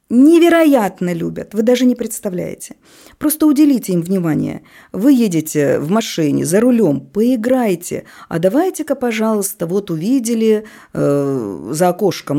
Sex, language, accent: female, Russian, native